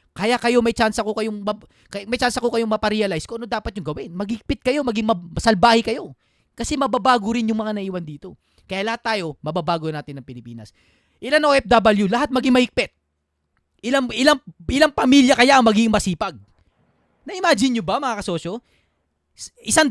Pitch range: 165-250 Hz